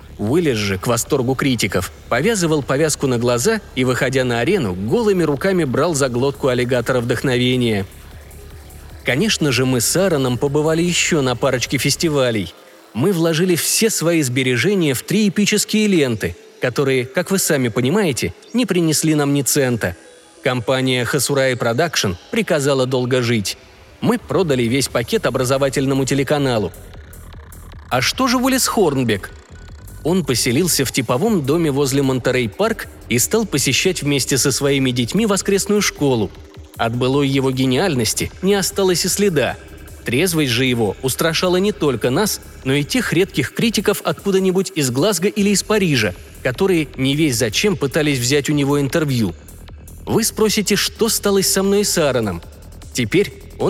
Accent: native